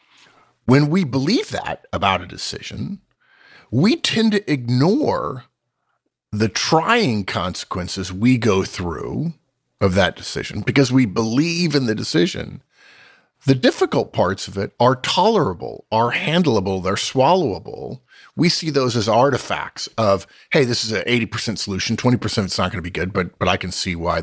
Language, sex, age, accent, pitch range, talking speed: English, male, 50-69, American, 95-135 Hz, 155 wpm